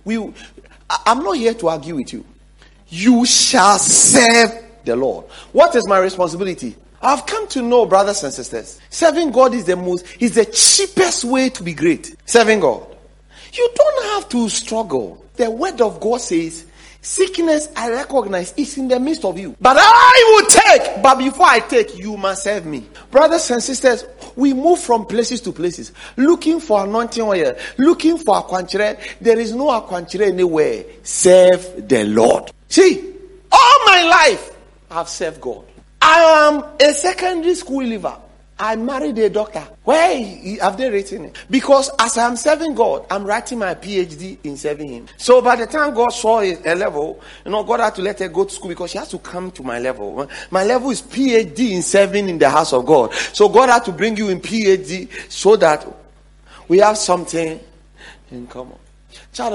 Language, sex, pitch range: English, male, 185-275 Hz